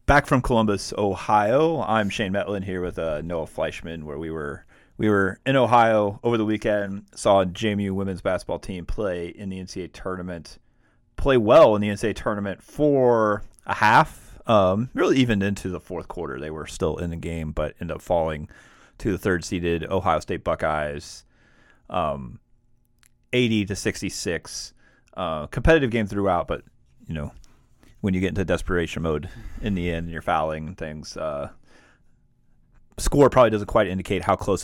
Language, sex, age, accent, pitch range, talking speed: English, male, 30-49, American, 85-110 Hz, 170 wpm